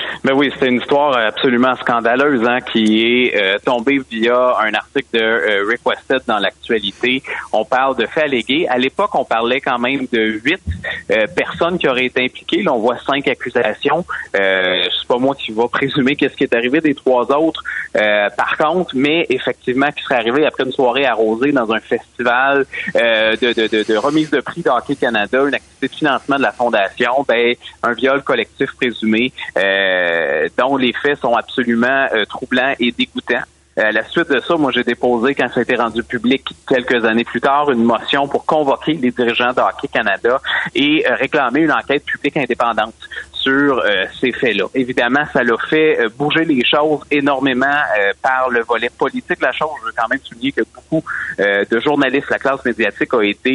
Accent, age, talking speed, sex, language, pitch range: Canadian, 30-49, 195 wpm, male, French, 115-140 Hz